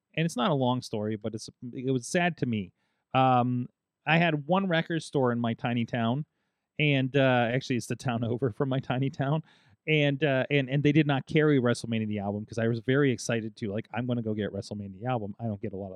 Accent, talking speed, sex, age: American, 245 wpm, male, 30-49